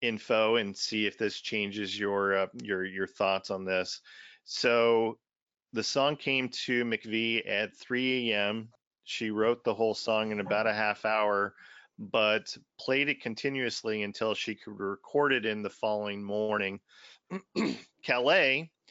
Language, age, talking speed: English, 40-59, 145 wpm